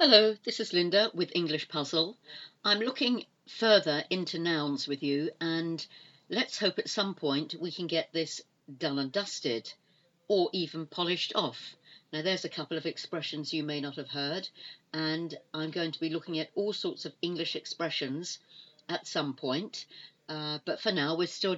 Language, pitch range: English, 145-180 Hz